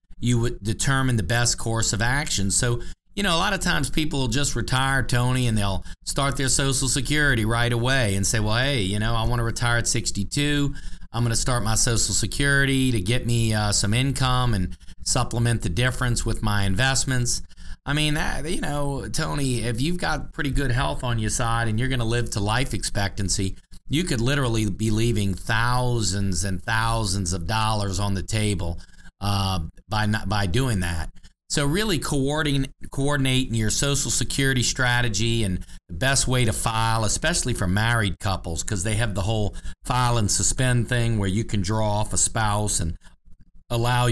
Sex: male